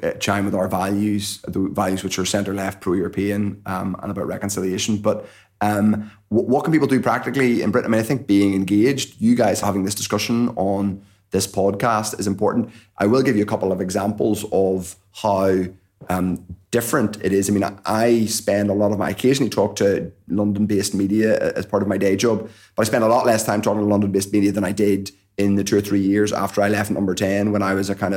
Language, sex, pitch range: English, male, 100-110 Hz